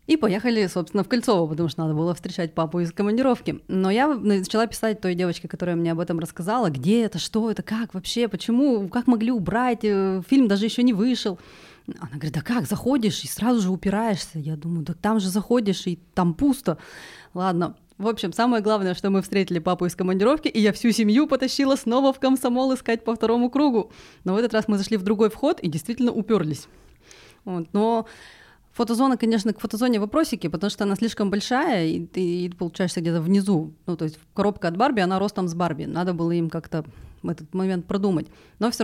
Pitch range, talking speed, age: 180-230 Hz, 200 wpm, 20-39